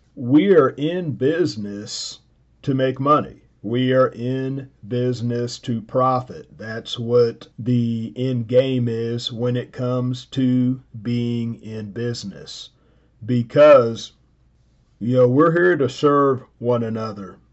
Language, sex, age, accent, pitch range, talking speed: English, male, 40-59, American, 115-130 Hz, 120 wpm